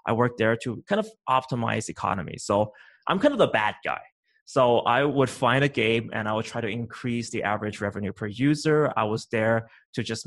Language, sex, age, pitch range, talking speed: English, male, 20-39, 110-135 Hz, 215 wpm